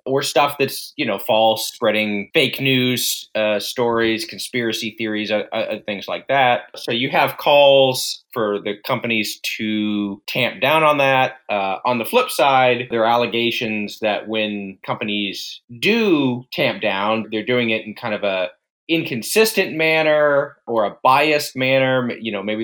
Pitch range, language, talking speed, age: 110-135 Hz, English, 160 wpm, 30-49